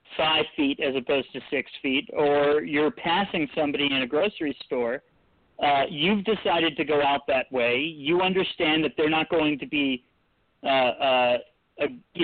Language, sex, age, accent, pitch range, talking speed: English, male, 40-59, American, 140-170 Hz, 170 wpm